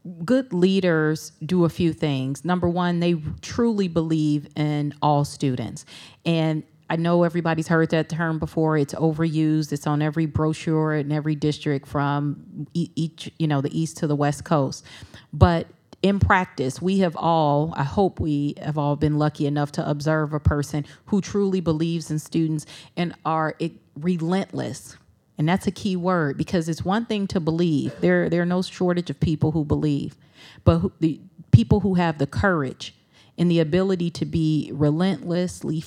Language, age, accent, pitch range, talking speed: English, 30-49, American, 150-170 Hz, 165 wpm